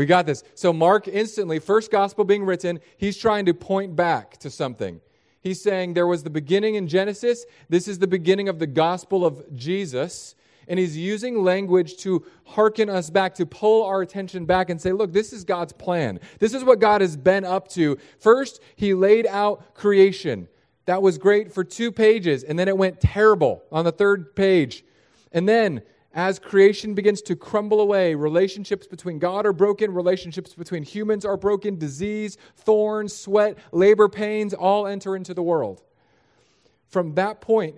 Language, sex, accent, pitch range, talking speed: English, male, American, 165-200 Hz, 180 wpm